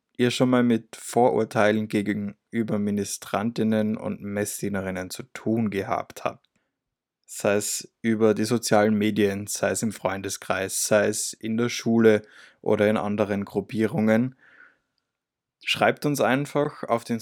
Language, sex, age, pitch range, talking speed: German, male, 20-39, 105-125 Hz, 130 wpm